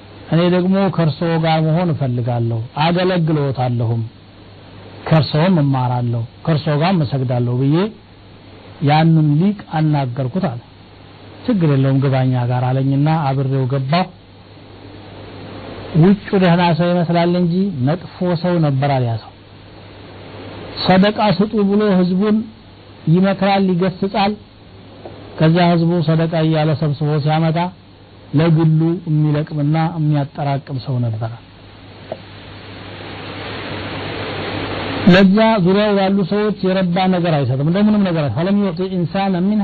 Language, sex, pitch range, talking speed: Amharic, male, 110-180 Hz, 95 wpm